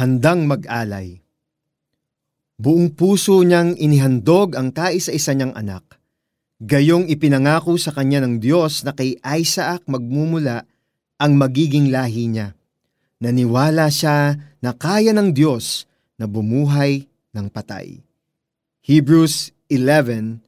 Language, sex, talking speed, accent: Filipino, male, 105 wpm, native